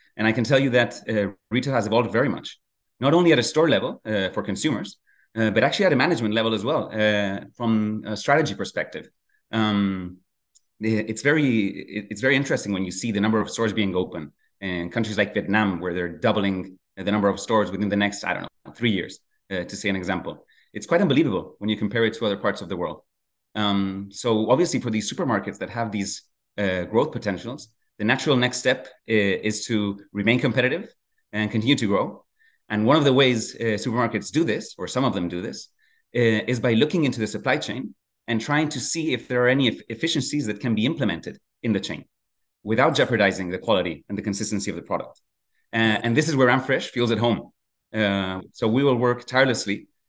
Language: English